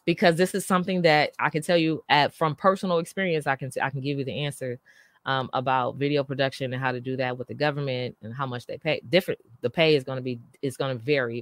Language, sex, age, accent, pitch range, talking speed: English, female, 20-39, American, 135-170 Hz, 255 wpm